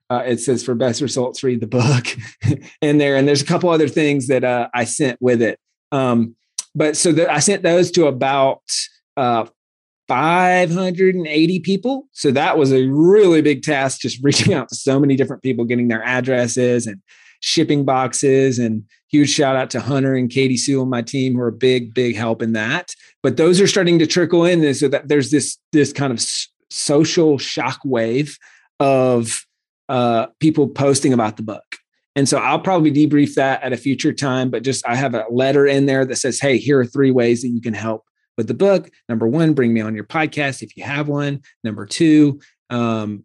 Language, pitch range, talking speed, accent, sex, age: English, 120-150 Hz, 205 wpm, American, male, 30-49